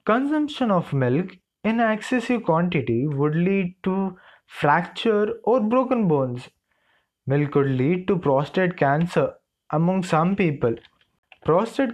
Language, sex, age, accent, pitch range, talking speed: English, male, 20-39, Indian, 140-210 Hz, 115 wpm